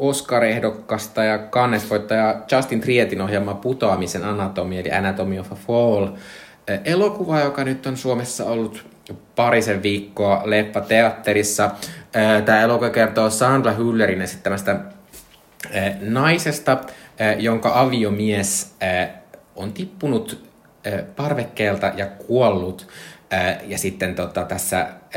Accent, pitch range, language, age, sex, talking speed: native, 95-125 Hz, Finnish, 20-39, male, 100 wpm